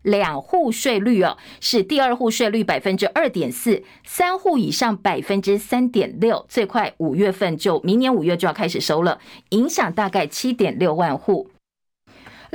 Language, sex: Chinese, female